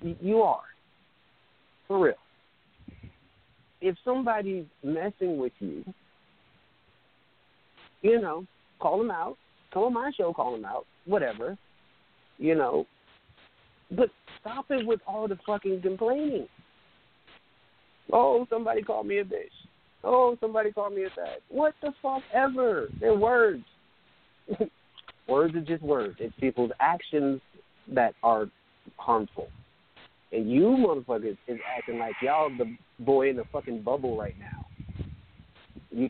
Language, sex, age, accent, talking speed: English, male, 50-69, American, 125 wpm